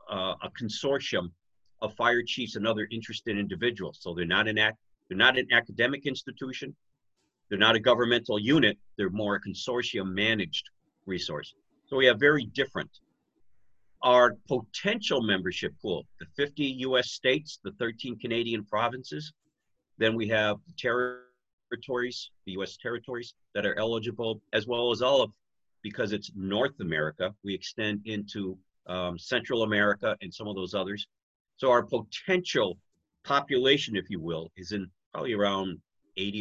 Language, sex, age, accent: English, male, 50-69, American